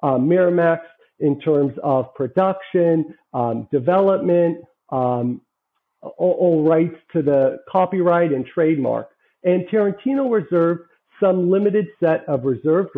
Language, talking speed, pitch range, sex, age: English, 115 wpm, 145-180 Hz, male, 50-69